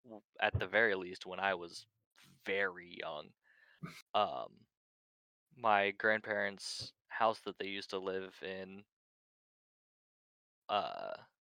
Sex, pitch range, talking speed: male, 95-110 Hz, 105 wpm